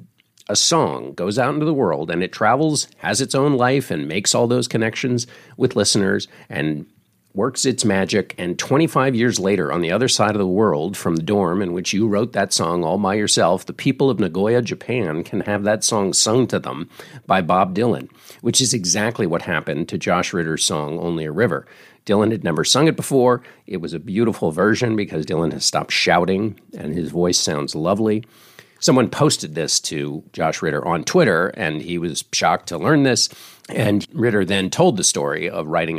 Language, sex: English, male